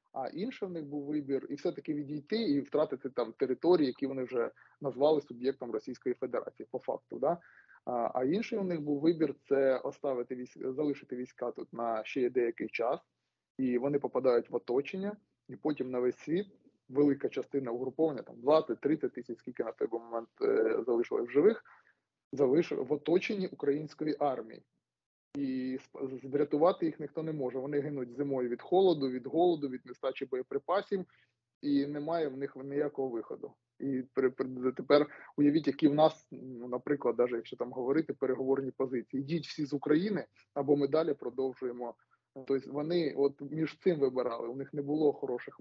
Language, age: Ukrainian, 20-39